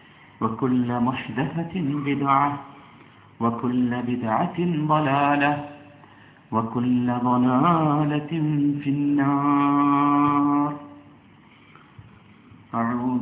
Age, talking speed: 50-69, 55 wpm